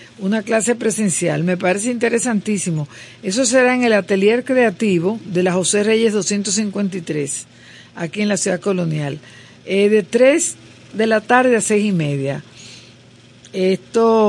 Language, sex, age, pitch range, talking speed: Spanish, female, 50-69, 170-225 Hz, 140 wpm